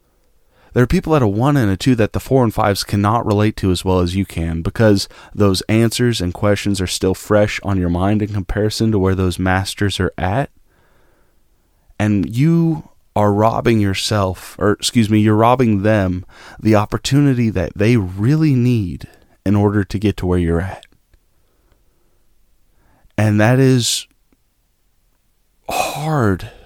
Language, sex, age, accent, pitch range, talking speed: English, male, 30-49, American, 95-110 Hz, 160 wpm